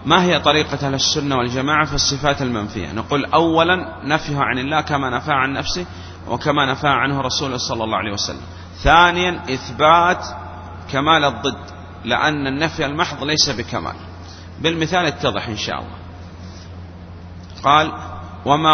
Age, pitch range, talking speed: 30-49, 90-155 Hz, 130 wpm